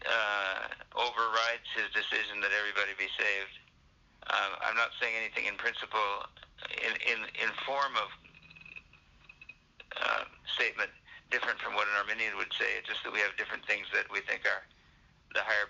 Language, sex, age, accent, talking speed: English, male, 50-69, American, 155 wpm